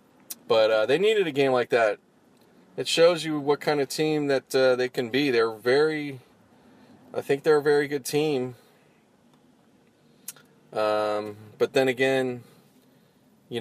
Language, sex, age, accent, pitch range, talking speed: English, male, 20-39, American, 110-140 Hz, 150 wpm